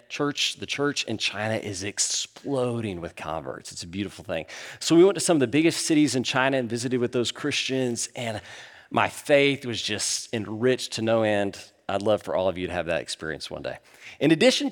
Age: 40-59